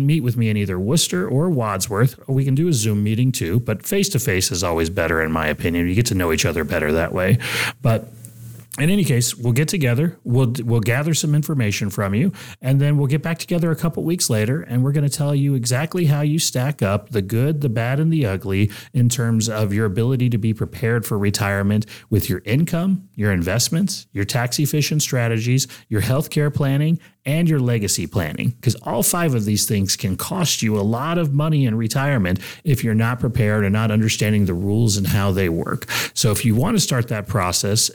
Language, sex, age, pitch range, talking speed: English, male, 30-49, 110-150 Hz, 215 wpm